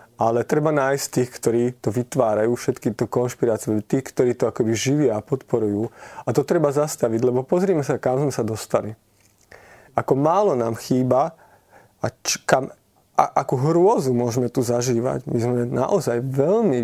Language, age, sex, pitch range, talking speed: Slovak, 20-39, male, 120-145 Hz, 160 wpm